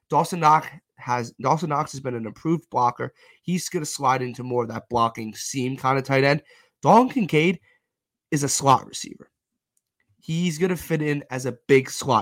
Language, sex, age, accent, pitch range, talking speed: English, male, 20-39, American, 130-170 Hz, 180 wpm